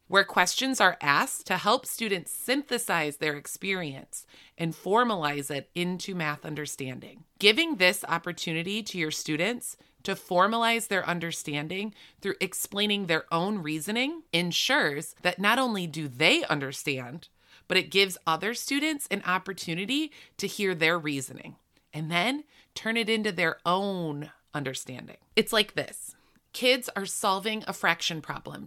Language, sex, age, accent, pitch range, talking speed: English, female, 30-49, American, 155-205 Hz, 140 wpm